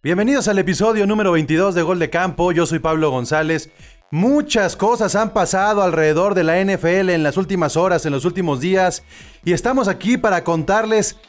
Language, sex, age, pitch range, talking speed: Spanish, male, 30-49, 160-215 Hz, 180 wpm